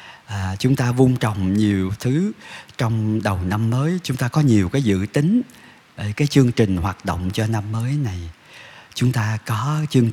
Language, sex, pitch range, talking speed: Vietnamese, male, 100-130 Hz, 180 wpm